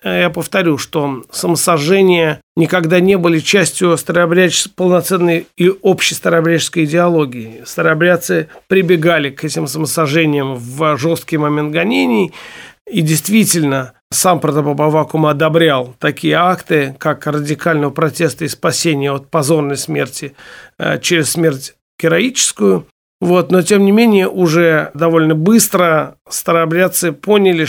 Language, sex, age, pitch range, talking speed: Russian, male, 40-59, 150-175 Hz, 115 wpm